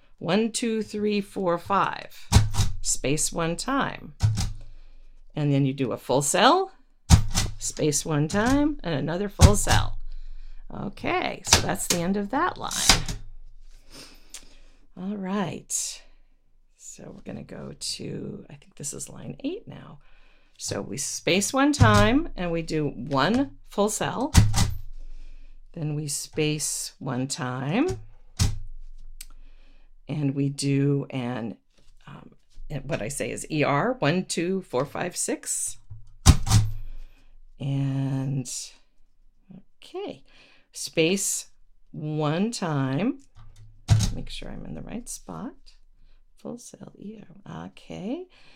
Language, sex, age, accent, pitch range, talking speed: English, female, 50-69, American, 110-180 Hz, 110 wpm